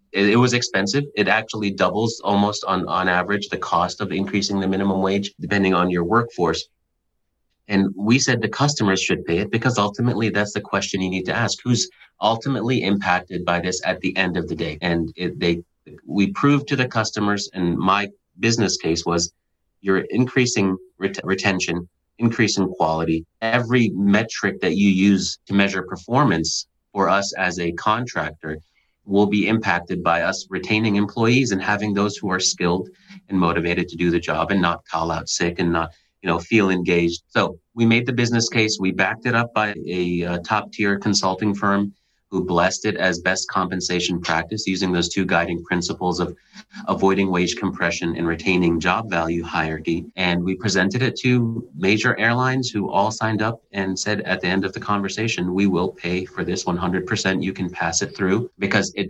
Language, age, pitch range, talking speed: English, 30-49, 90-110 Hz, 185 wpm